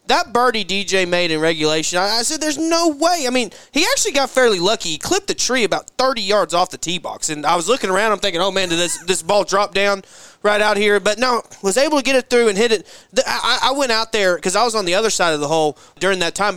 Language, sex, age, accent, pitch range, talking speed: English, male, 20-39, American, 160-210 Hz, 280 wpm